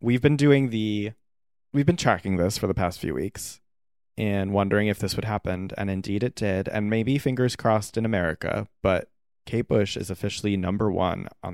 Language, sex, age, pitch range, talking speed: English, male, 30-49, 95-115 Hz, 190 wpm